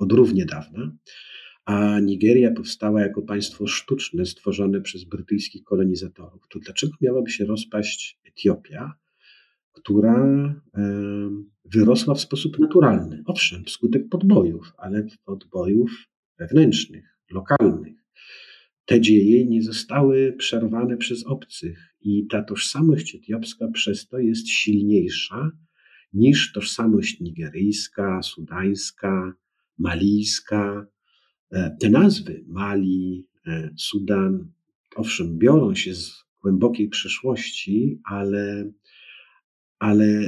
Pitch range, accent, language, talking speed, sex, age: 100-125 Hz, native, Polish, 95 wpm, male, 50-69